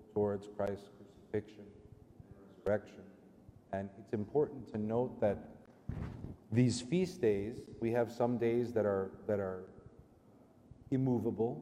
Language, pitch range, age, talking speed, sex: English, 105-120 Hz, 40-59, 120 wpm, male